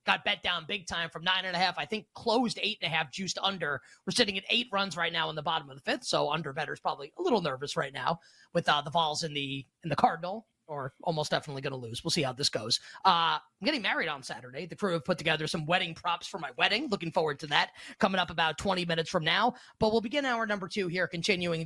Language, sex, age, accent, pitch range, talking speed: English, male, 30-49, American, 160-195 Hz, 270 wpm